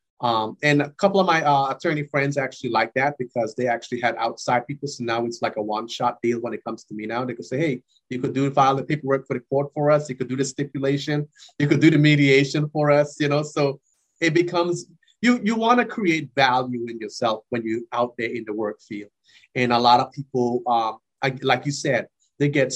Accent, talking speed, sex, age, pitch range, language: American, 240 wpm, male, 30-49, 120-150 Hz, English